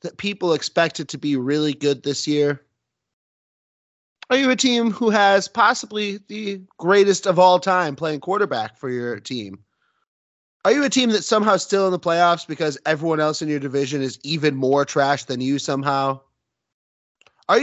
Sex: male